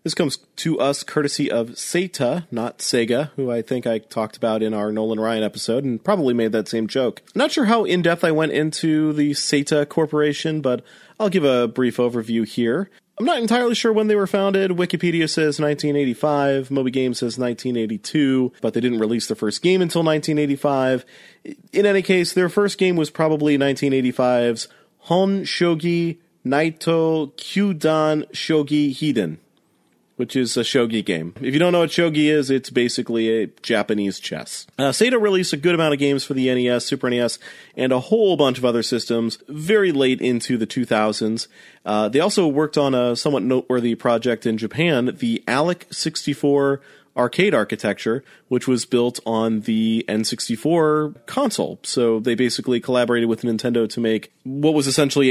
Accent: American